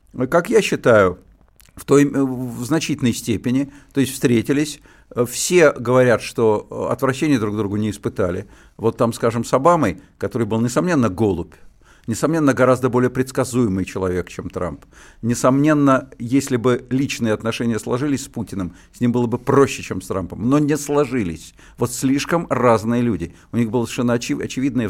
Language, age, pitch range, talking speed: Russian, 50-69, 105-140 Hz, 150 wpm